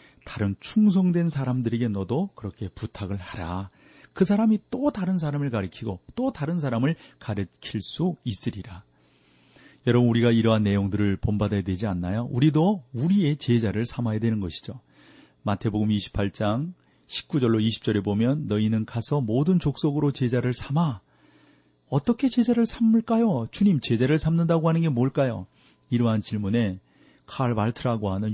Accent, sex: native, male